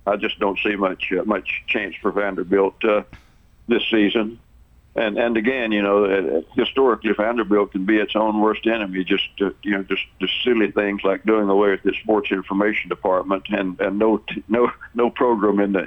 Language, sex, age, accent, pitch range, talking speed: English, male, 60-79, American, 95-110 Hz, 195 wpm